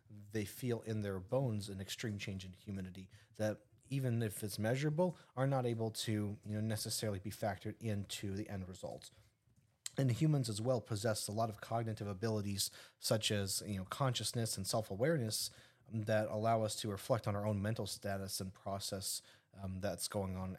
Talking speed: 180 wpm